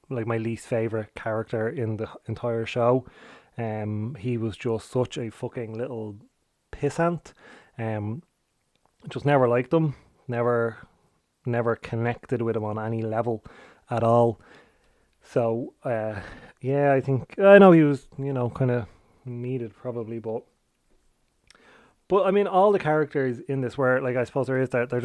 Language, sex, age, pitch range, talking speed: English, male, 30-49, 115-135 Hz, 155 wpm